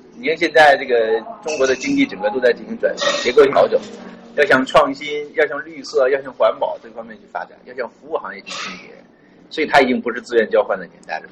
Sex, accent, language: male, native, Chinese